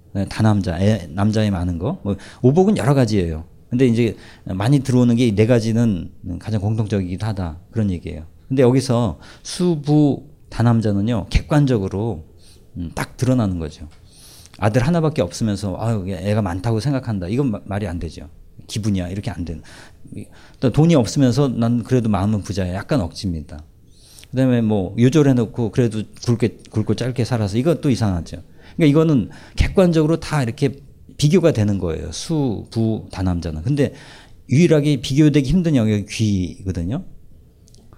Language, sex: Korean, male